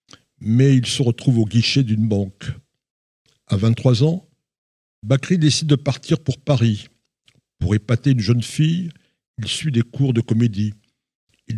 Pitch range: 110-135 Hz